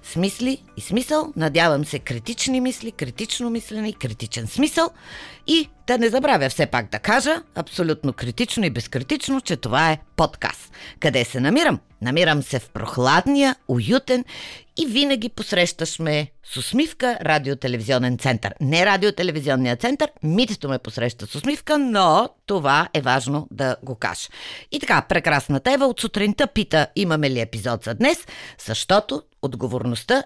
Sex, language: female, Bulgarian